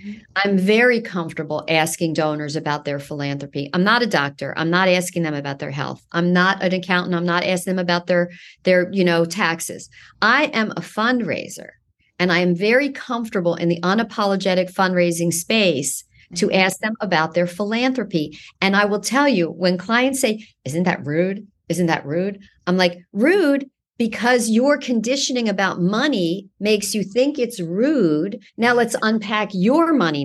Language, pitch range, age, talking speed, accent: English, 170-220 Hz, 50-69, 165 wpm, American